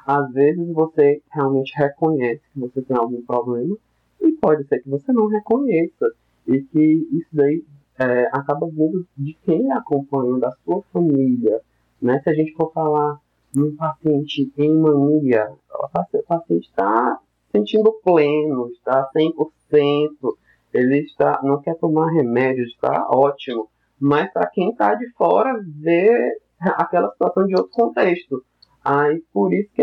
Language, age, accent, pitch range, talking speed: Portuguese, 20-39, Brazilian, 135-175 Hz, 140 wpm